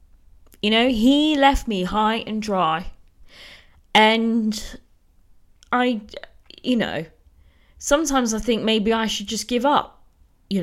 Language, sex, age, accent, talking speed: English, female, 20-39, British, 125 wpm